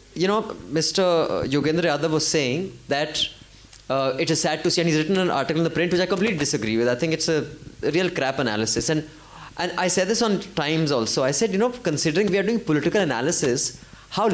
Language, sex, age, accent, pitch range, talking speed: English, male, 20-39, Indian, 130-195 Hz, 220 wpm